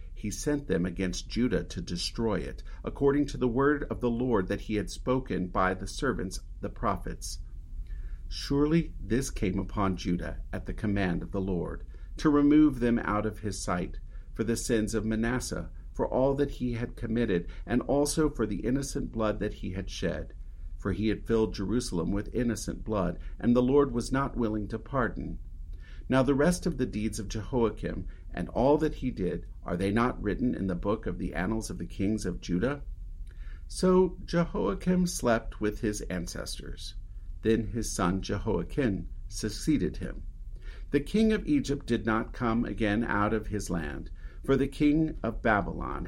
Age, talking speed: 50-69, 175 wpm